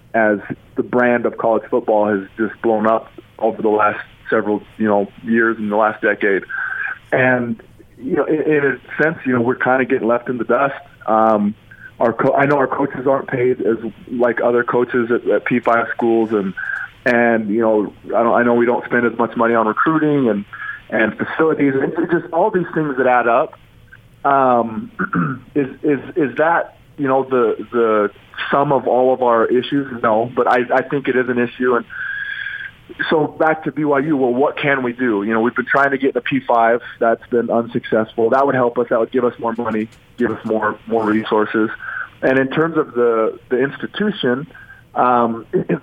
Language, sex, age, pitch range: English, male, 20-39, 115-135 Hz